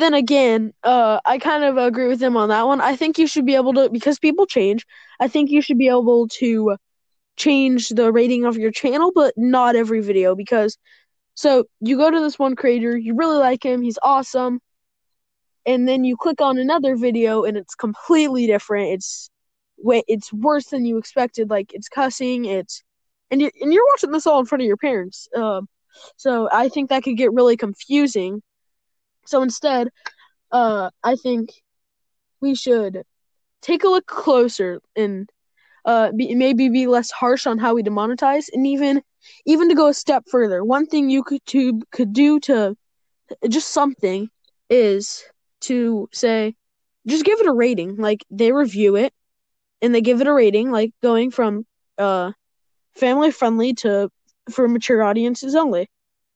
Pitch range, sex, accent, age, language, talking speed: 225-275 Hz, female, American, 10-29, English, 175 wpm